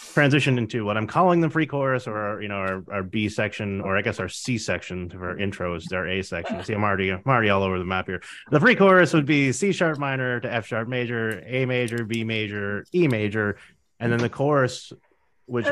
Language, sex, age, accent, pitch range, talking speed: English, male, 30-49, American, 100-130 Hz, 220 wpm